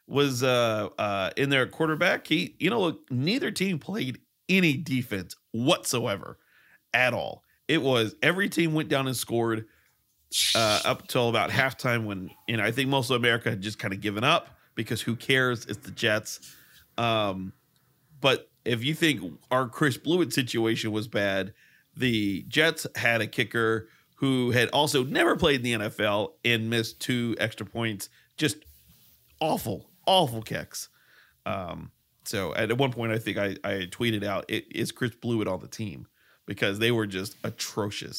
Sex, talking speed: male, 170 wpm